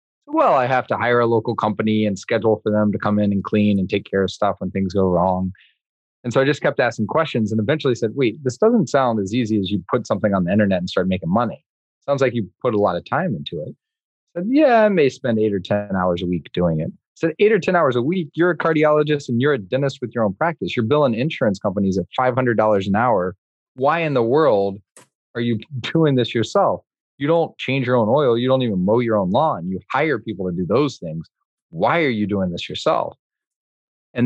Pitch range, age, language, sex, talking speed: 100-135 Hz, 30-49, English, male, 245 wpm